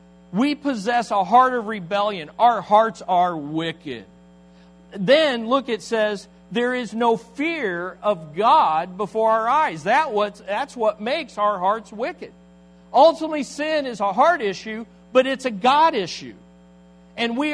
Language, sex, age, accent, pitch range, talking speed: English, male, 40-59, American, 180-245 Hz, 150 wpm